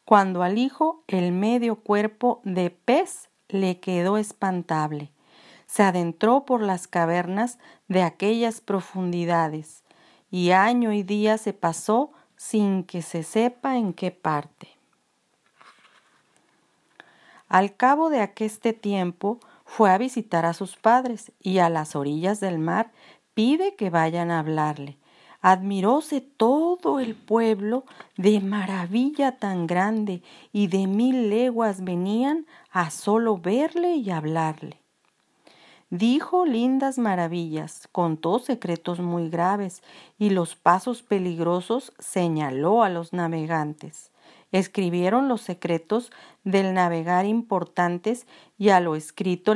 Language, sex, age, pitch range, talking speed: Spanish, female, 40-59, 175-230 Hz, 115 wpm